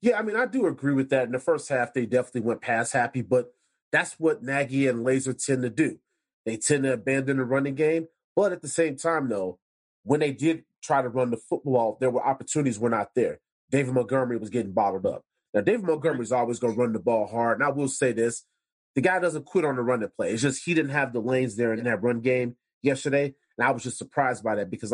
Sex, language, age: male, English, 30-49